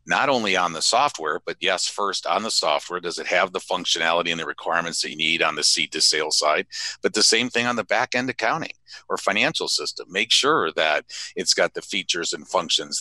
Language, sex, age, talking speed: English, male, 50-69, 225 wpm